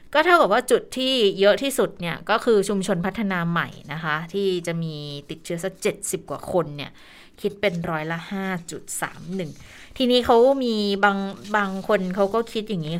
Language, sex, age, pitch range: Thai, female, 20-39, 170-210 Hz